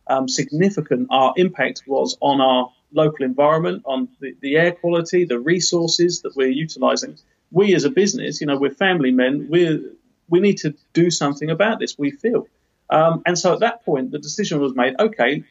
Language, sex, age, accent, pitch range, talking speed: English, male, 40-59, British, 135-175 Hz, 190 wpm